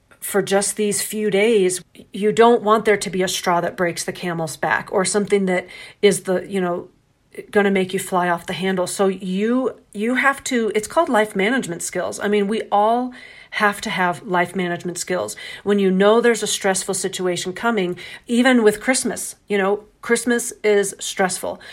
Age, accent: 40-59, American